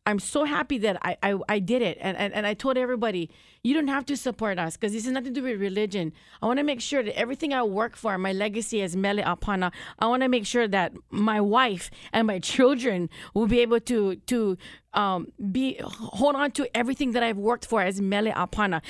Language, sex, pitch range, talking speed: English, female, 200-250 Hz, 230 wpm